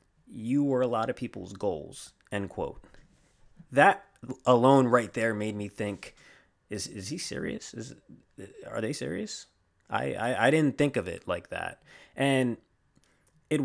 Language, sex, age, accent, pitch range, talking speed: English, male, 20-39, American, 105-130 Hz, 155 wpm